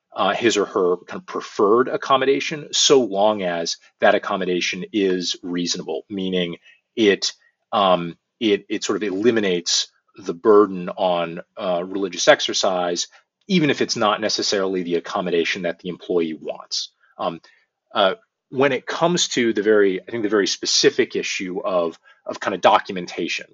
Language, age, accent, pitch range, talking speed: English, 30-49, American, 90-120 Hz, 150 wpm